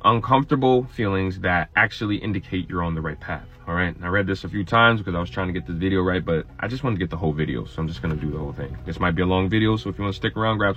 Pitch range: 85-110 Hz